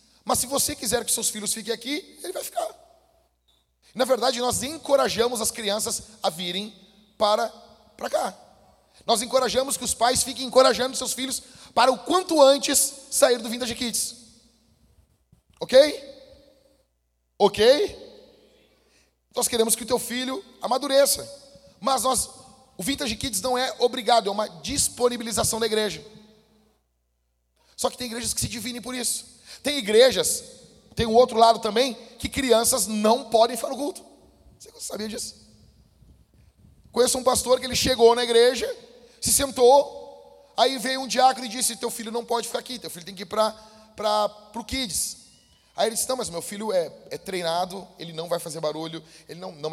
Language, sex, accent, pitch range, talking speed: Portuguese, male, Brazilian, 210-260 Hz, 165 wpm